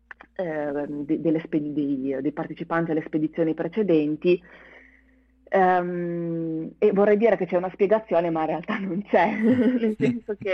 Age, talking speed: 30-49, 150 wpm